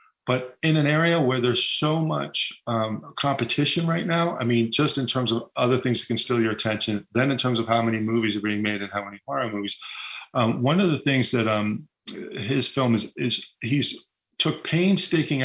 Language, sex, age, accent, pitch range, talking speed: English, male, 40-59, American, 115-160 Hz, 210 wpm